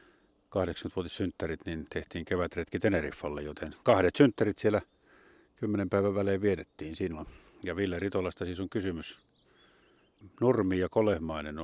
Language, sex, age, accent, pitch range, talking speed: Finnish, male, 50-69, native, 80-95 Hz, 125 wpm